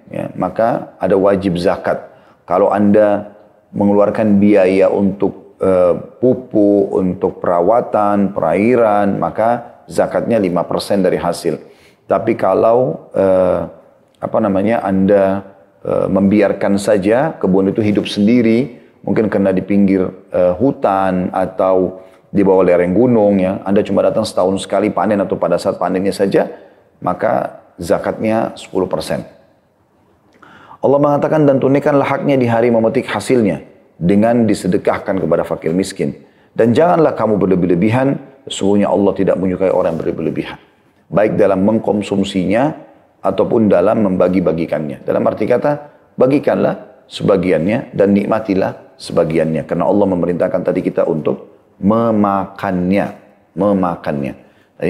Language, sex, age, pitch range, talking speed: Indonesian, male, 30-49, 95-115 Hz, 115 wpm